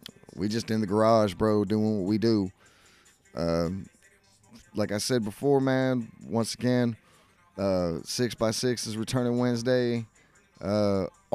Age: 20-39